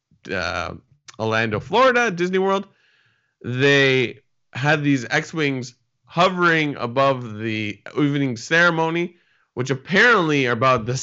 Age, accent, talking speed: 20-39, American, 105 wpm